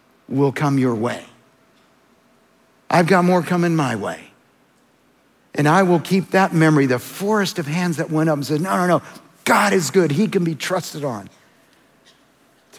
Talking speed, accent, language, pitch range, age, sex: 175 wpm, American, English, 155-205 Hz, 50-69, male